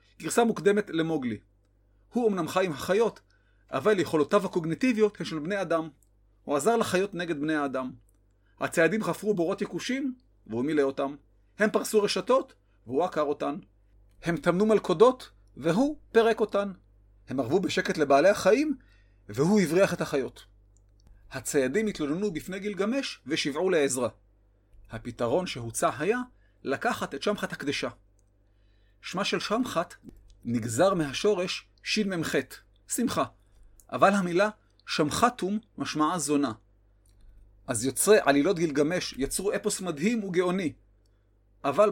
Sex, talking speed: male, 120 wpm